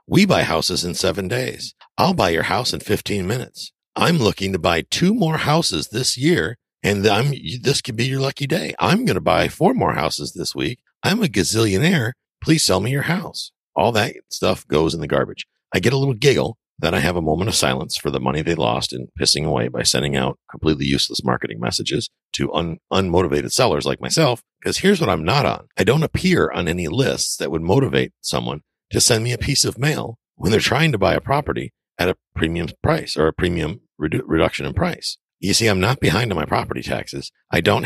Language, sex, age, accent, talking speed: English, male, 50-69, American, 220 wpm